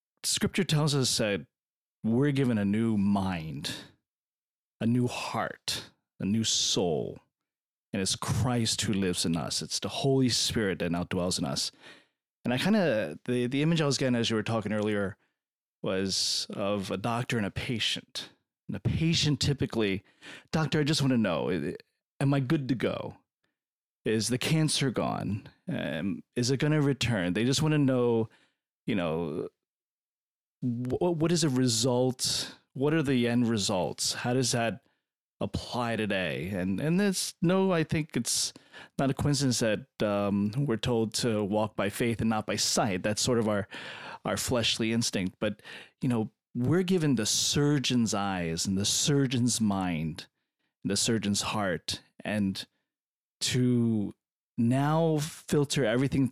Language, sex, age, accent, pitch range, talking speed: English, male, 30-49, American, 105-140 Hz, 160 wpm